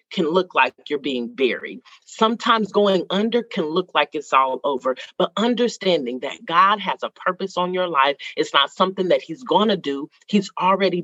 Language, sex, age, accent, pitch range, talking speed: English, female, 40-59, American, 175-225 Hz, 190 wpm